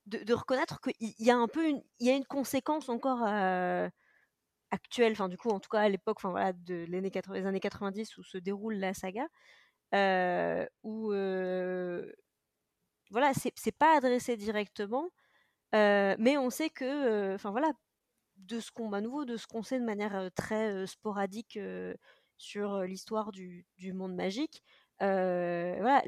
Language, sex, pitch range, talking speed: French, female, 185-235 Hz, 175 wpm